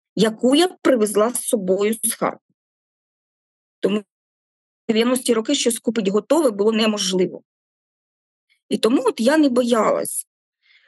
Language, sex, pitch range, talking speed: Ukrainian, female, 205-265 Hz, 125 wpm